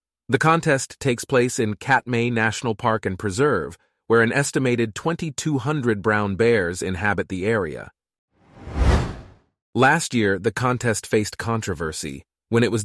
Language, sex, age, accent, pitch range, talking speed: English, male, 30-49, American, 100-120 Hz, 130 wpm